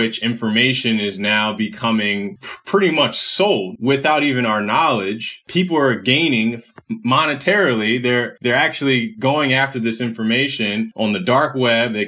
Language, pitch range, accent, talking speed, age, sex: English, 115-135 Hz, American, 140 wpm, 20-39, male